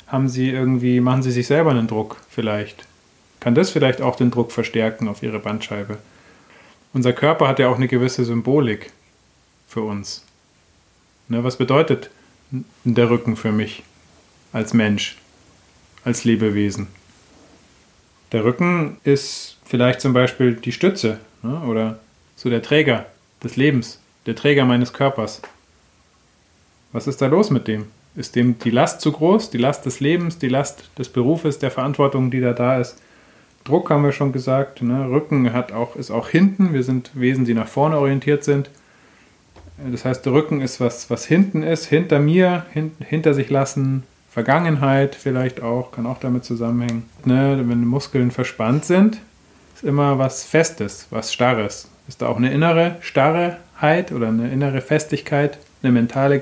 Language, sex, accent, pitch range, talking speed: German, male, German, 115-140 Hz, 160 wpm